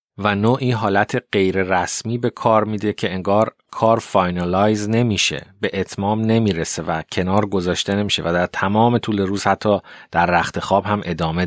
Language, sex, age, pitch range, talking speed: Persian, male, 30-49, 90-120 Hz, 155 wpm